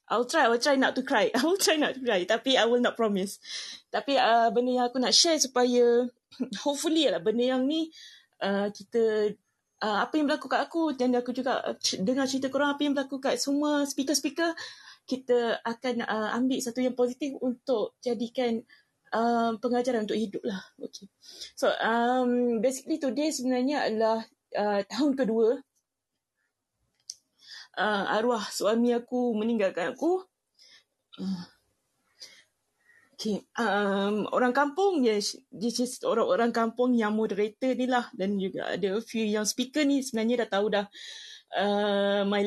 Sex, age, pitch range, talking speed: female, 20-39, 215-265 Hz, 150 wpm